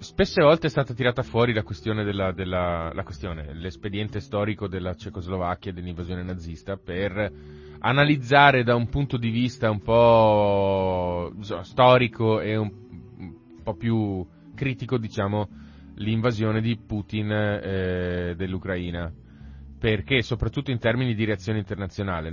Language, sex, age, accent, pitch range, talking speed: Italian, male, 30-49, native, 90-115 Hz, 125 wpm